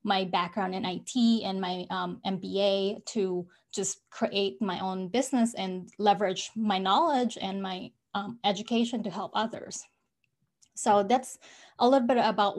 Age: 20-39